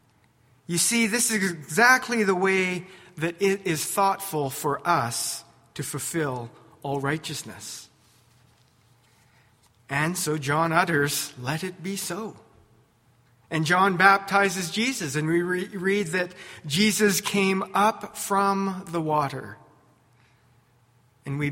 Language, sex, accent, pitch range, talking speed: English, male, American, 125-190 Hz, 115 wpm